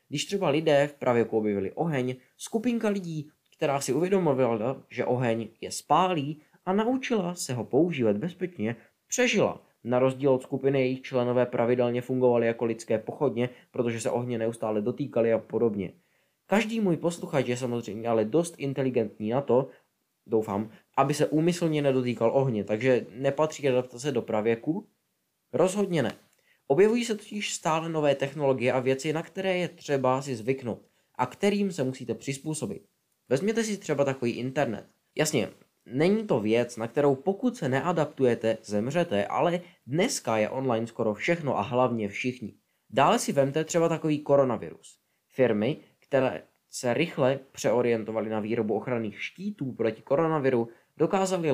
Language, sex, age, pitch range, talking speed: Czech, male, 20-39, 120-165 Hz, 145 wpm